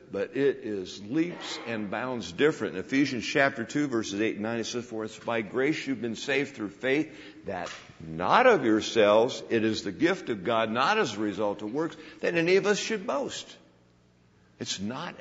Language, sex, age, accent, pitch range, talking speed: English, male, 60-79, American, 95-150 Hz, 195 wpm